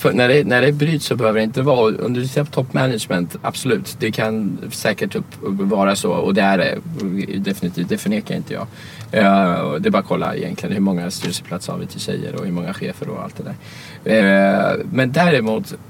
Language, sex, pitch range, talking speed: English, male, 100-135 Hz, 190 wpm